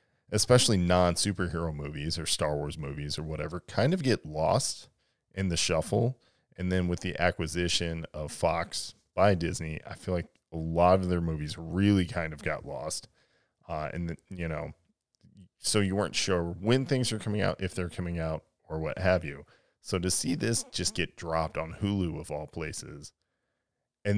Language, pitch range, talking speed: English, 80-100 Hz, 180 wpm